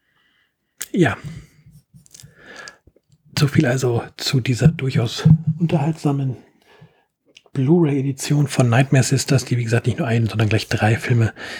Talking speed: 115 wpm